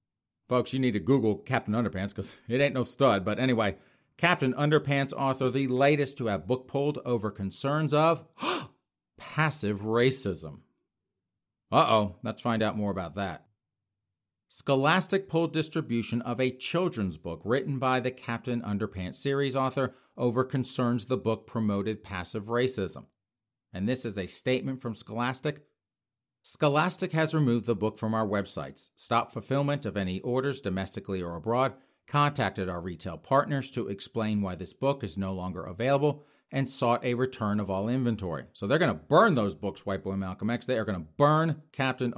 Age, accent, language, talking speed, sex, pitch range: 40-59, American, English, 165 wpm, male, 100-135 Hz